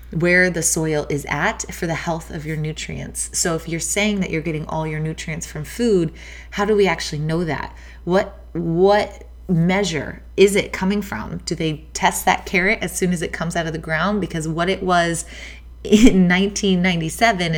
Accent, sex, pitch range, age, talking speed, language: American, female, 155-190 Hz, 20-39, 190 wpm, English